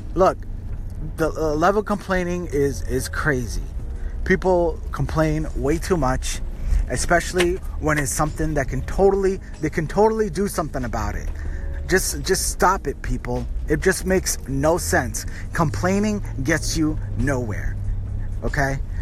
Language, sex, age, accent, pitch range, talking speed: English, male, 20-39, American, 105-165 Hz, 135 wpm